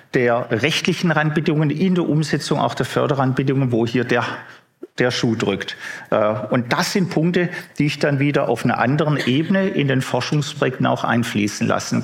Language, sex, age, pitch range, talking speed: German, male, 50-69, 120-160 Hz, 165 wpm